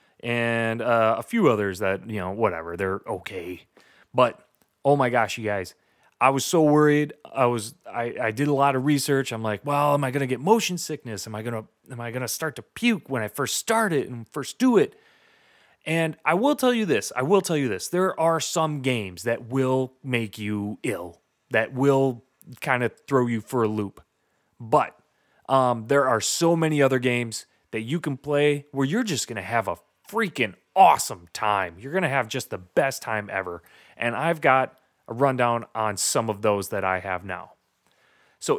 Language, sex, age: English, male, 30-49